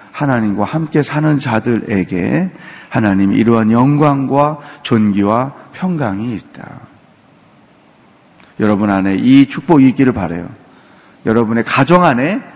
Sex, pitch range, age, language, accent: male, 115-180 Hz, 40-59, Korean, native